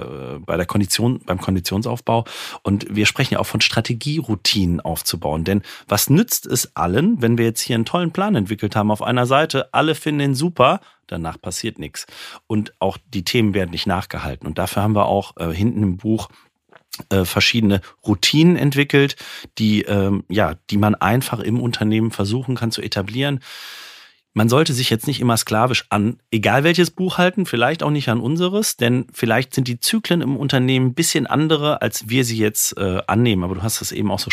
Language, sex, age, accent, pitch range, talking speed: German, male, 40-59, German, 100-130 Hz, 185 wpm